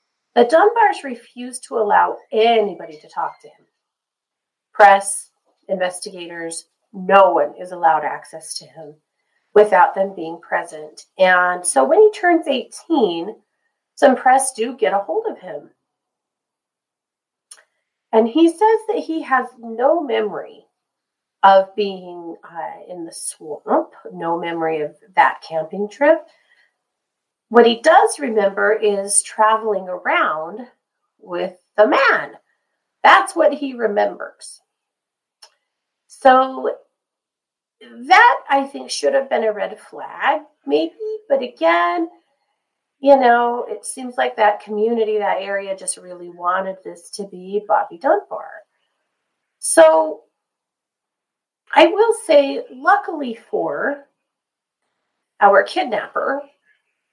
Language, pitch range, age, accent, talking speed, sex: English, 185-285 Hz, 30-49, American, 115 wpm, female